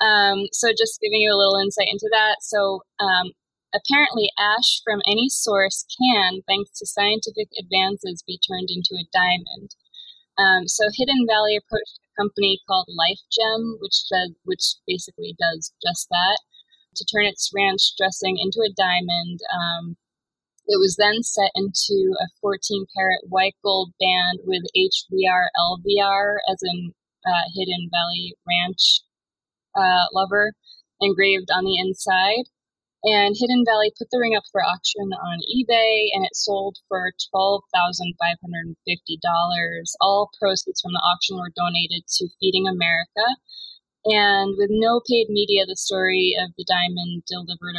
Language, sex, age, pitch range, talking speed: English, female, 20-39, 180-210 Hz, 145 wpm